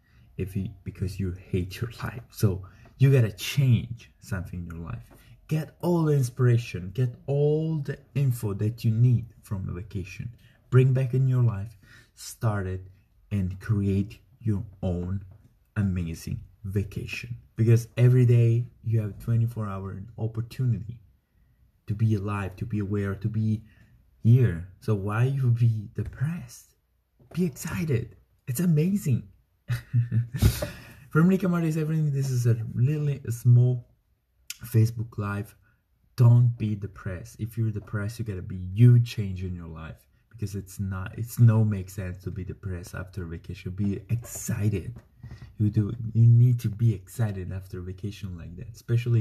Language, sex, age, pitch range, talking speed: English, male, 30-49, 95-120 Hz, 145 wpm